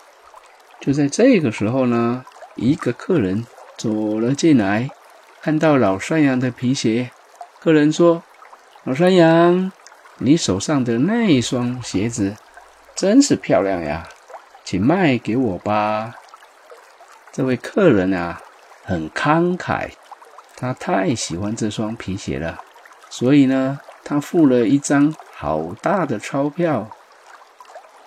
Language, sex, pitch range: Chinese, male, 115-160 Hz